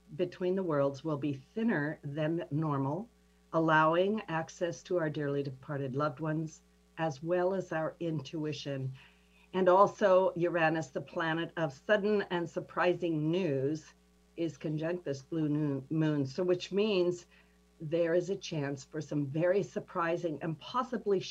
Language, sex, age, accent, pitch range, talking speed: English, female, 50-69, American, 140-180 Hz, 140 wpm